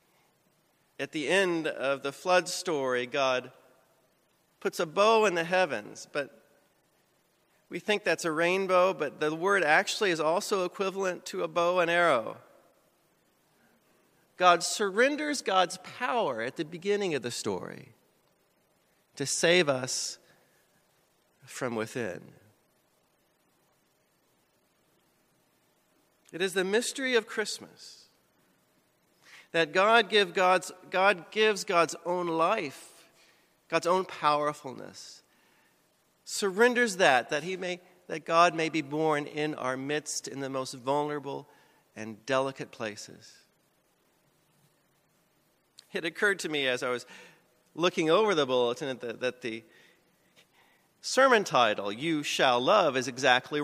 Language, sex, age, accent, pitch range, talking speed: English, male, 40-59, American, 140-190 Hz, 120 wpm